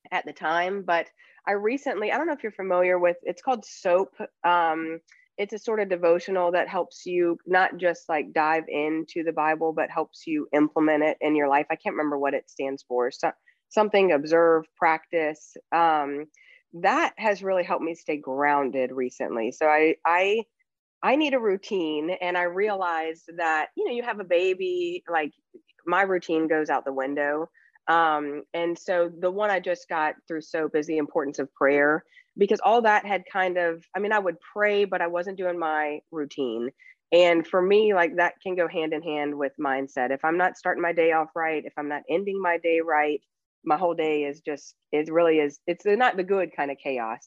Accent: American